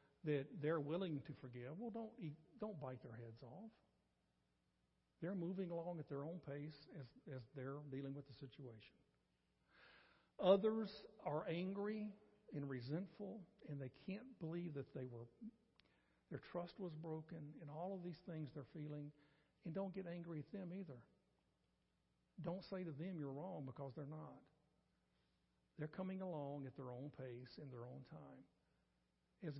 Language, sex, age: English, male, 60-79